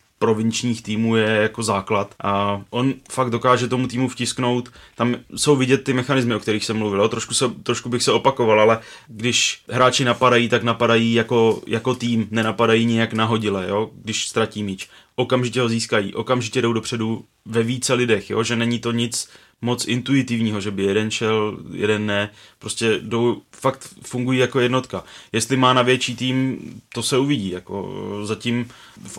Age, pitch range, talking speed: 20-39, 105-120 Hz, 160 wpm